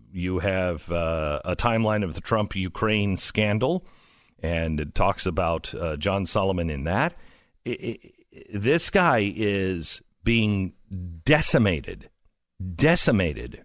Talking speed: 125 wpm